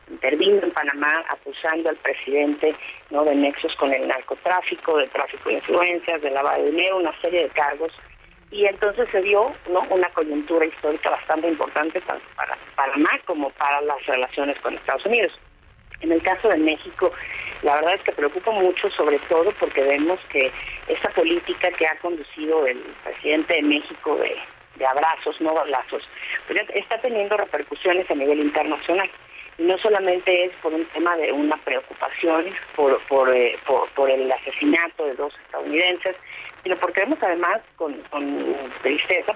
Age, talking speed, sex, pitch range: 40-59, 160 wpm, female, 150-185 Hz